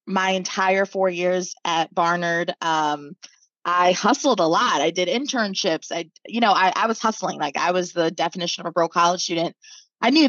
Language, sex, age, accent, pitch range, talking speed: English, female, 20-39, American, 180-240 Hz, 190 wpm